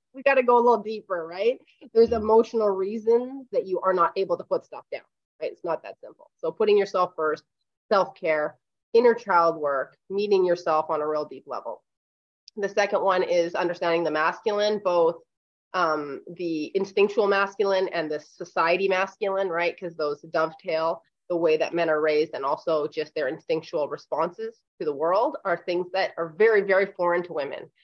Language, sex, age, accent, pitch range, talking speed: English, female, 30-49, American, 175-235 Hz, 180 wpm